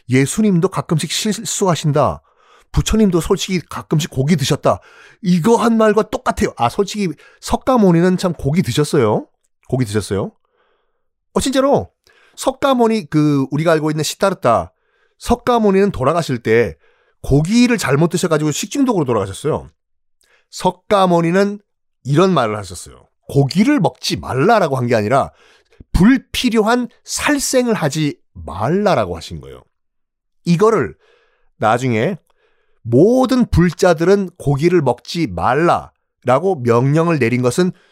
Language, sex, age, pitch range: Korean, male, 30-49, 135-220 Hz